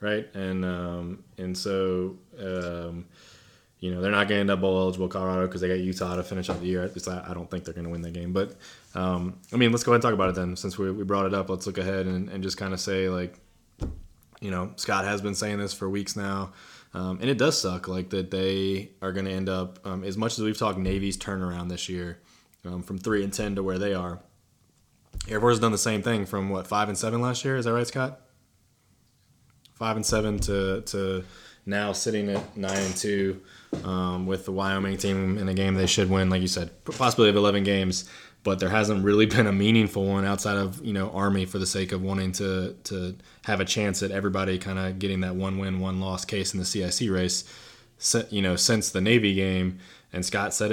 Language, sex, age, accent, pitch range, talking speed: English, male, 20-39, American, 95-100 Hz, 240 wpm